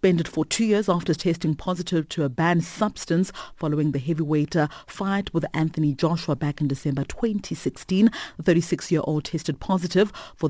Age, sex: 30-49, female